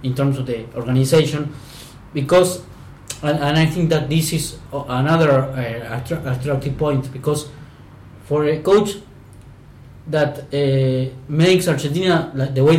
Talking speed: 130 wpm